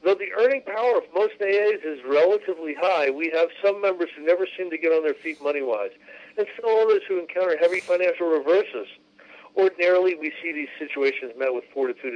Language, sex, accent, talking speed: English, male, American, 190 wpm